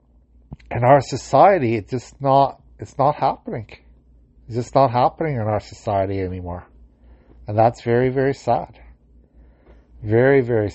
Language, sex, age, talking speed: English, male, 60-79, 135 wpm